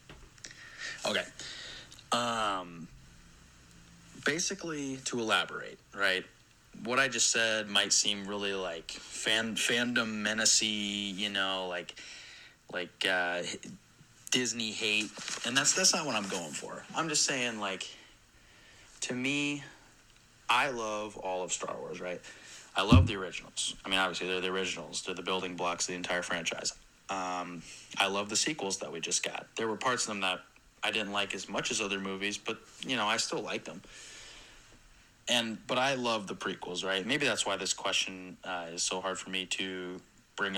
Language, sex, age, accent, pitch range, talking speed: English, male, 30-49, American, 95-115 Hz, 165 wpm